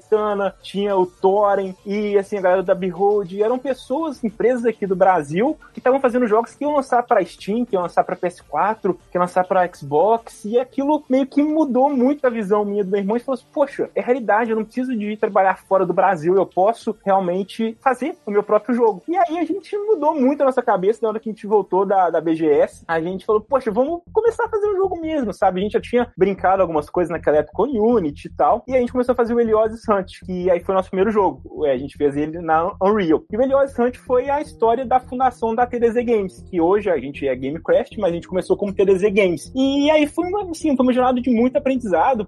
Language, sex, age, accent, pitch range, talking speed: Portuguese, male, 20-39, Brazilian, 185-255 Hz, 240 wpm